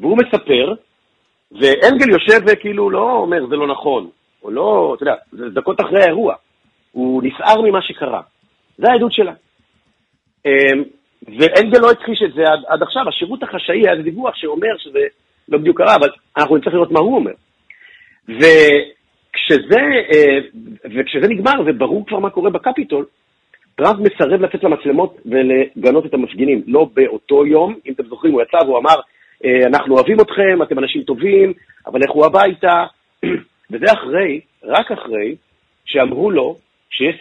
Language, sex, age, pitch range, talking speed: Hebrew, male, 50-69, 140-215 Hz, 145 wpm